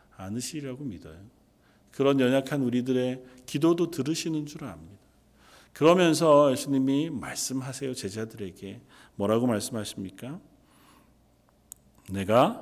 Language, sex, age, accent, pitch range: Korean, male, 40-59, native, 120-175 Hz